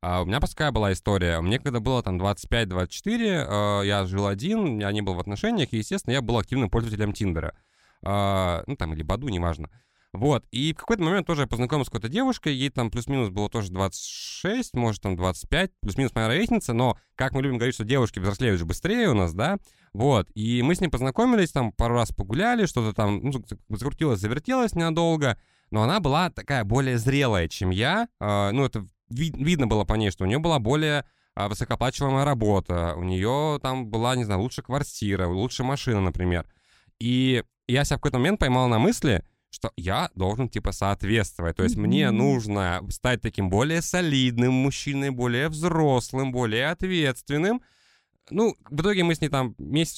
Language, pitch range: Russian, 100-140 Hz